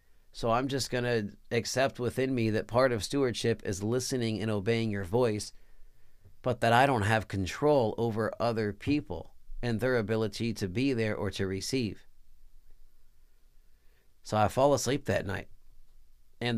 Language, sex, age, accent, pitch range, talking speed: English, male, 40-59, American, 100-135 Hz, 155 wpm